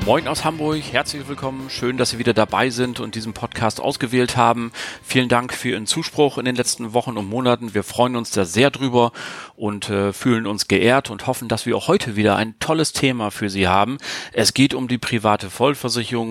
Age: 40-59